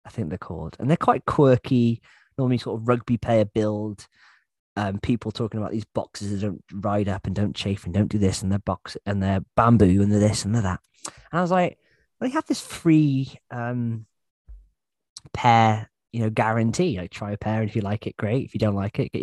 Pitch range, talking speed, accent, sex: 95-125 Hz, 230 wpm, British, male